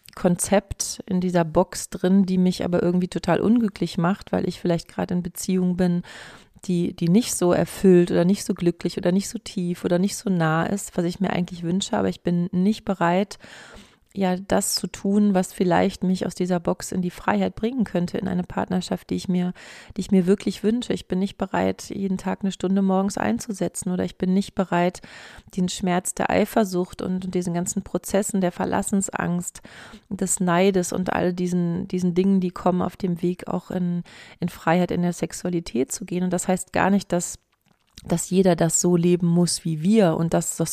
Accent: German